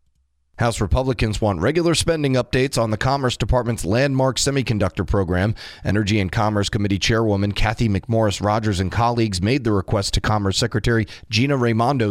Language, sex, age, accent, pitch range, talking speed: English, male, 30-49, American, 100-125 Hz, 150 wpm